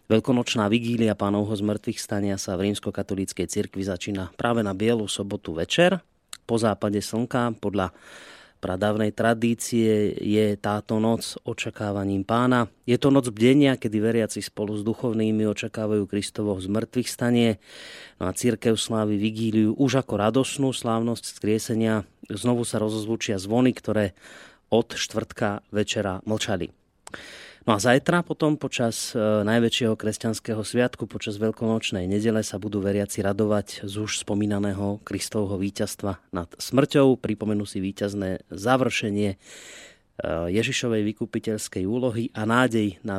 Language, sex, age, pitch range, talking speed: Slovak, male, 30-49, 100-115 Hz, 125 wpm